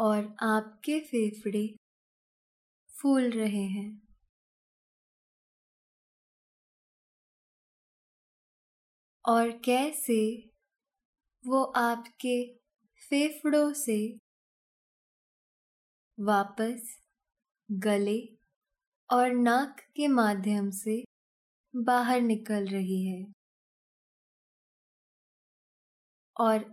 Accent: native